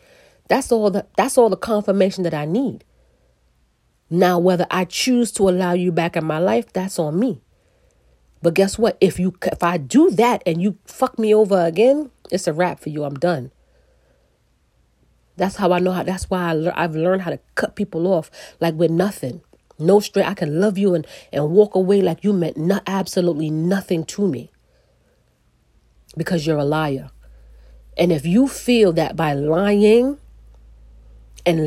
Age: 40-59